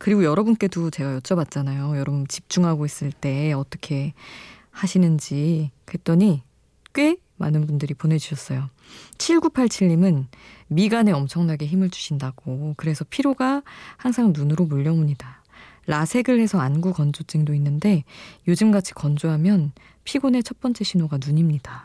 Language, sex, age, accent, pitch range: Korean, female, 20-39, native, 150-195 Hz